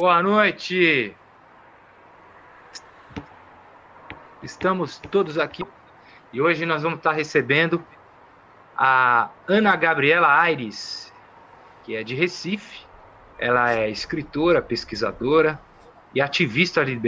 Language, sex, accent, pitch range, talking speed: Portuguese, male, Brazilian, 130-170 Hz, 90 wpm